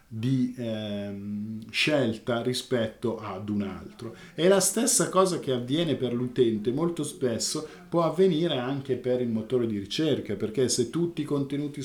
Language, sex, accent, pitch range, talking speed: Italian, male, native, 120-145 Hz, 150 wpm